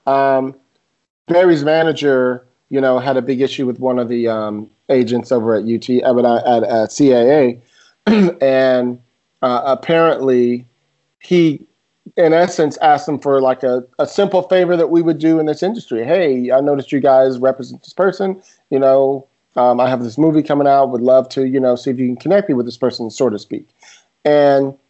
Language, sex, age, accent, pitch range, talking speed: English, male, 40-59, American, 125-160 Hz, 195 wpm